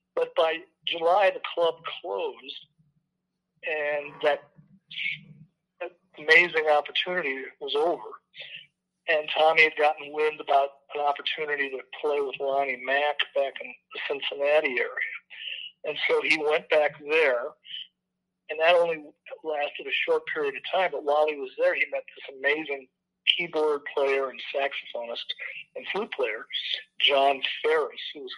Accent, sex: American, male